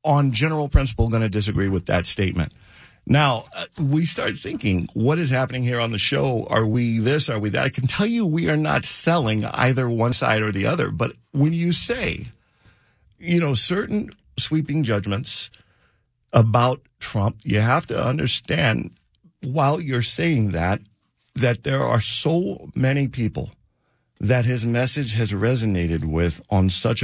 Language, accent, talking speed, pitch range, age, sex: English, American, 160 wpm, 110-150 Hz, 50-69, male